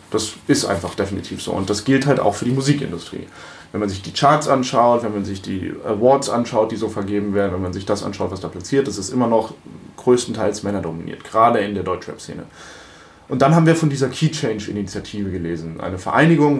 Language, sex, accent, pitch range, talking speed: German, male, German, 105-130 Hz, 205 wpm